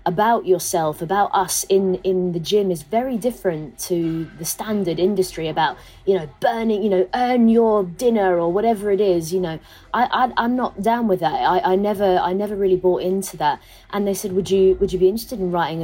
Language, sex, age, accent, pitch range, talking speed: English, female, 20-39, British, 175-220 Hz, 215 wpm